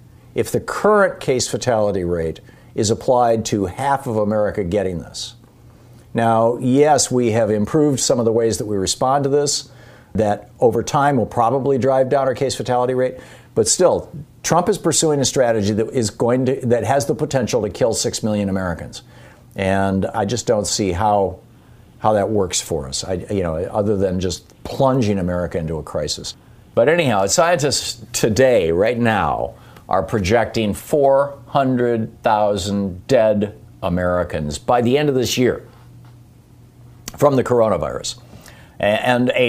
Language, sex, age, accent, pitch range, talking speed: English, male, 50-69, American, 105-130 Hz, 155 wpm